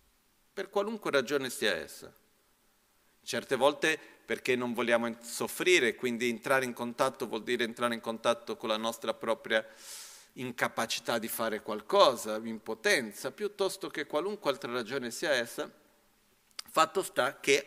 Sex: male